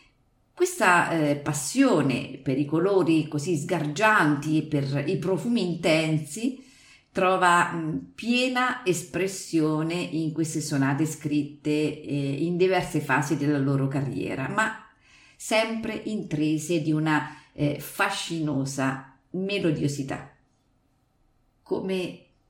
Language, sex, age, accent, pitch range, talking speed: Italian, female, 50-69, native, 145-180 Hz, 100 wpm